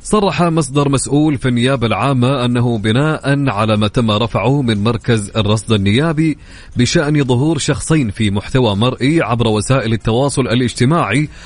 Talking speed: 135 wpm